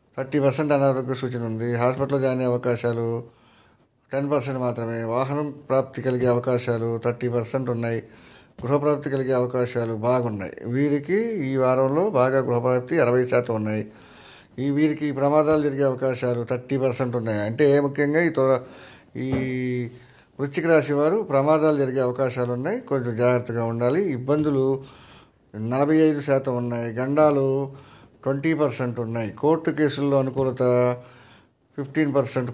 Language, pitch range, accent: Telugu, 120-140 Hz, native